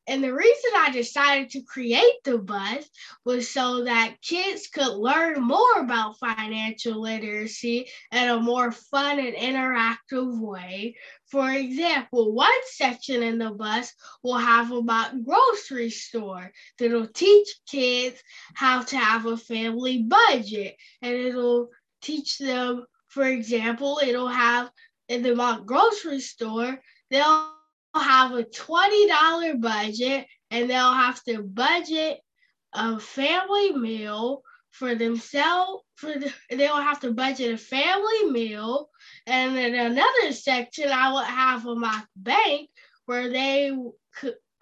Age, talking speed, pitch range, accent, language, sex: 10-29, 135 wpm, 235-290 Hz, American, English, female